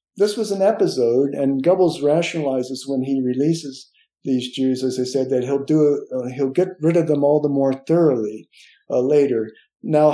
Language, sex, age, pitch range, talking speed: English, male, 50-69, 125-155 Hz, 185 wpm